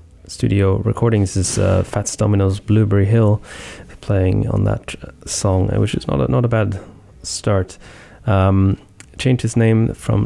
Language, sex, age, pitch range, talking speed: English, male, 20-39, 95-110 Hz, 150 wpm